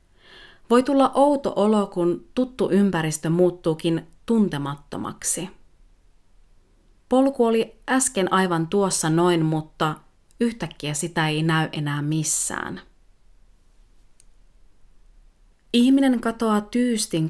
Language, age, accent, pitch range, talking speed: Finnish, 30-49, native, 155-215 Hz, 85 wpm